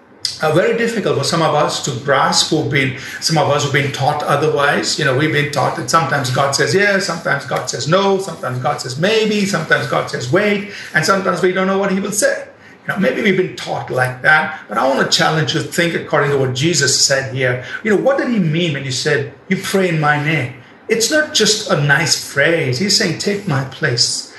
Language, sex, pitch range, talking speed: English, male, 140-190 Hz, 240 wpm